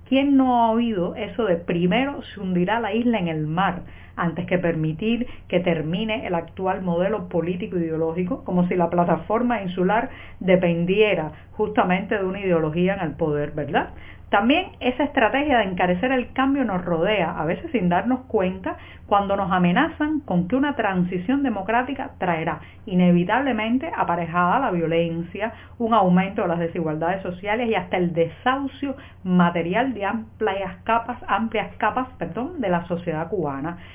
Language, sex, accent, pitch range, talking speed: Spanish, female, American, 175-245 Hz, 150 wpm